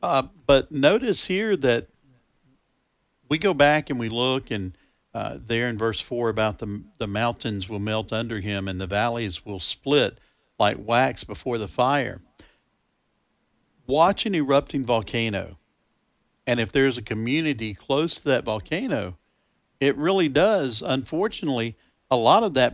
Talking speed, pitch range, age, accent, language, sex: 150 wpm, 110-145 Hz, 50-69, American, English, male